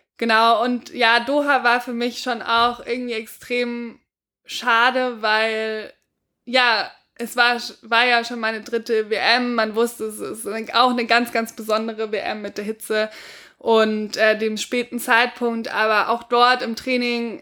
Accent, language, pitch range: German, German, 210-235 Hz